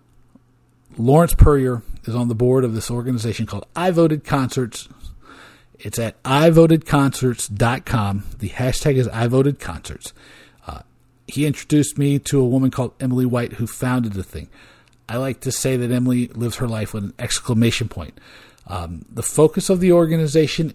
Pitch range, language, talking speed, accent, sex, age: 115-145 Hz, English, 170 wpm, American, male, 50-69